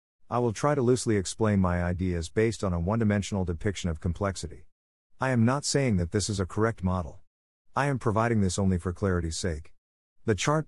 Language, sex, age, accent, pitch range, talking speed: English, male, 50-69, American, 90-115 Hz, 195 wpm